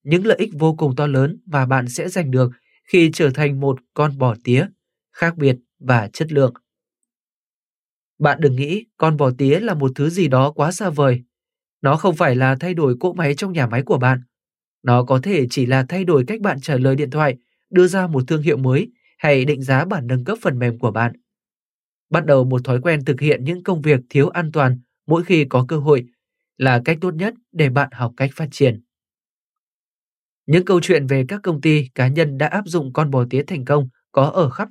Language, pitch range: Vietnamese, 130-170 Hz